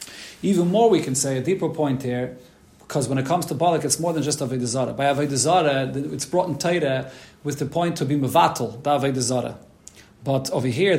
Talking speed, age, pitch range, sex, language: 200 wpm, 40-59, 145-205 Hz, male, English